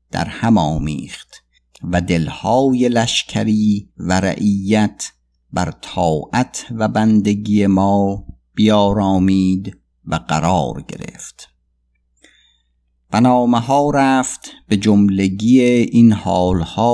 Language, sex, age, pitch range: Persian, male, 50-69, 85-110 Hz